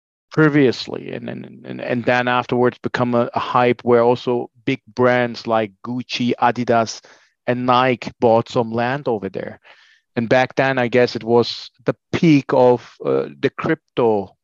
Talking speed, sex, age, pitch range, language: 155 wpm, male, 30-49, 110-125 Hz, English